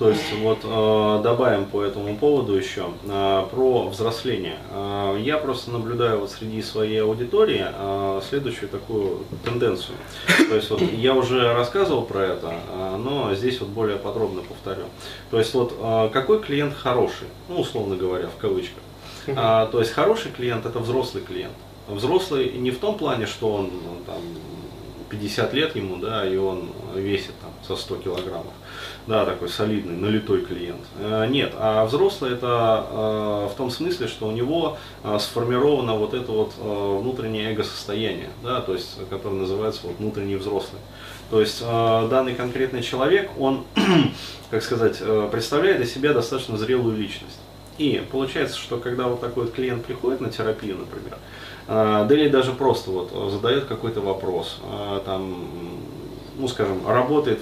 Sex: male